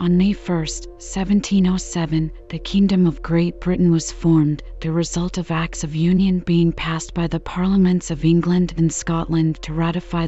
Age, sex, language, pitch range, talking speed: 40-59, female, English, 160-180 Hz, 165 wpm